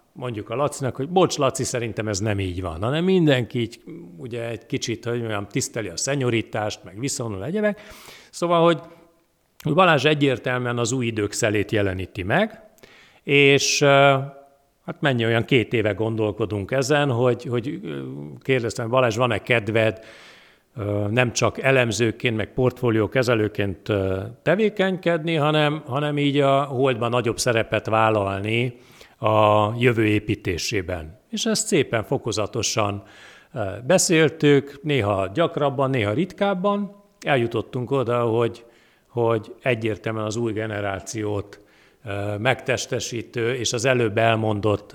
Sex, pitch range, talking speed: male, 105-140 Hz, 115 wpm